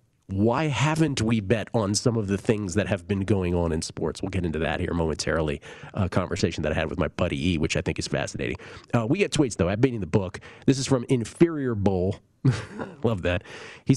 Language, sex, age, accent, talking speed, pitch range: English, male, 40-59, American, 230 wpm, 95-120 Hz